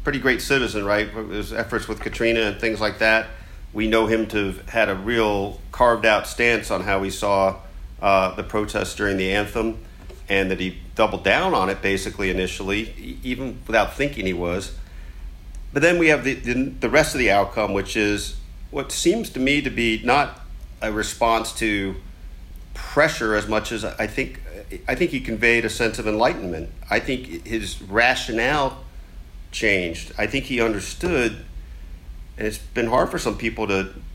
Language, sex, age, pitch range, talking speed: English, male, 50-69, 90-115 Hz, 175 wpm